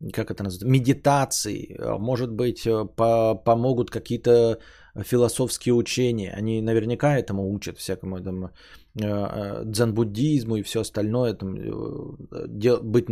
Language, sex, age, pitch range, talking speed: Bulgarian, male, 20-39, 100-125 Hz, 105 wpm